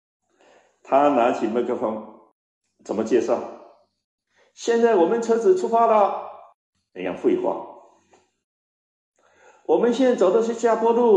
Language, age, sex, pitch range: Chinese, 60-79, male, 230-345 Hz